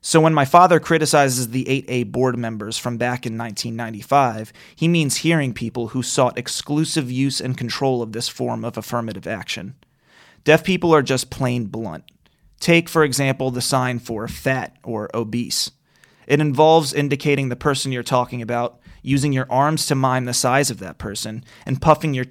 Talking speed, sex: 175 wpm, male